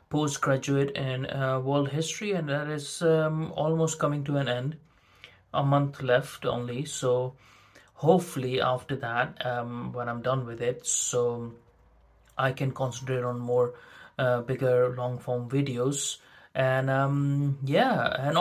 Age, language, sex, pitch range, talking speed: 30-49, English, male, 125-150 Hz, 135 wpm